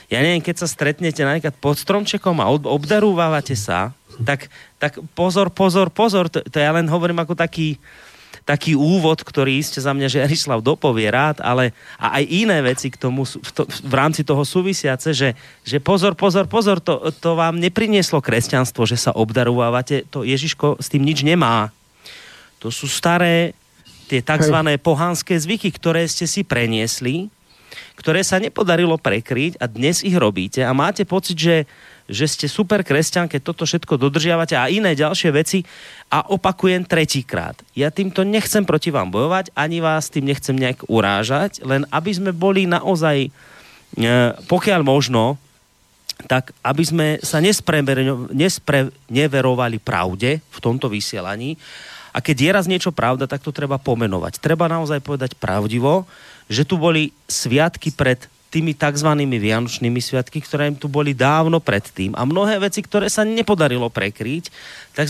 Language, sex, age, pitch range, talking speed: Slovak, male, 30-49, 130-175 Hz, 155 wpm